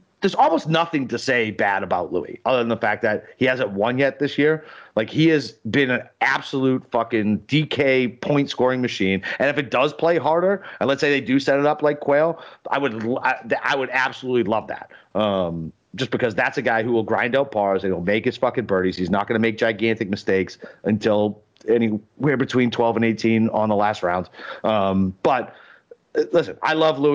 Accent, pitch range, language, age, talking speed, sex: American, 105-140 Hz, English, 40-59, 210 wpm, male